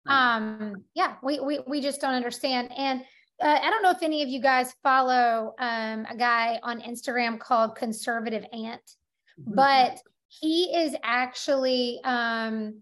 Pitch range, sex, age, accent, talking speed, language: 240-300 Hz, female, 30-49, American, 150 wpm, English